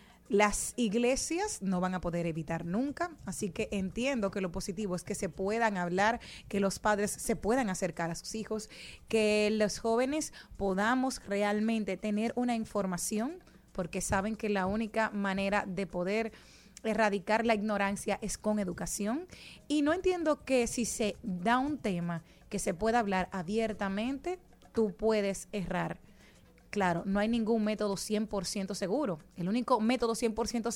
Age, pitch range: 30-49, 195-235 Hz